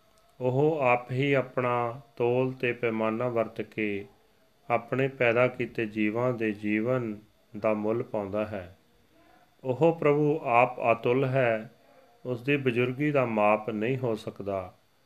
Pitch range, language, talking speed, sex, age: 110-150 Hz, Punjabi, 105 wpm, male, 40-59